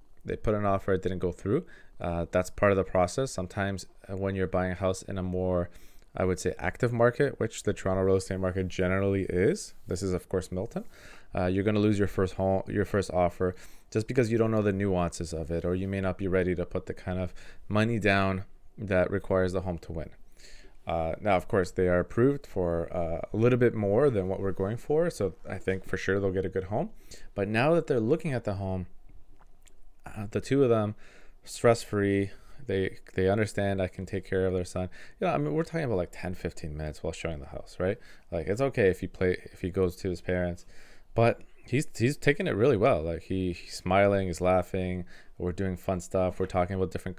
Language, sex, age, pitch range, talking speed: English, male, 20-39, 90-105 Hz, 230 wpm